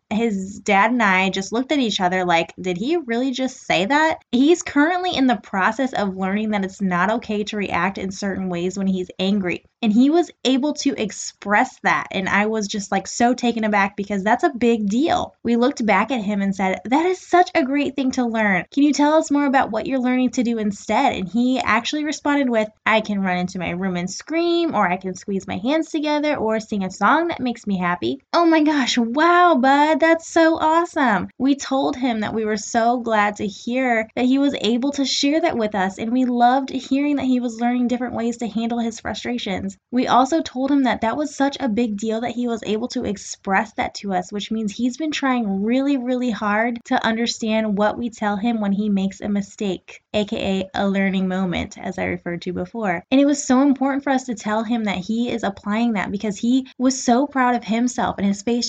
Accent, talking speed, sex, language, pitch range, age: American, 230 wpm, female, English, 205-270 Hz, 10-29